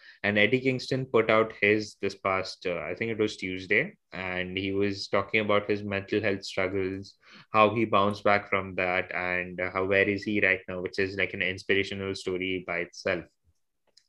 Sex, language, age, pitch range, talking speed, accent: male, English, 20-39, 95-120 Hz, 190 wpm, Indian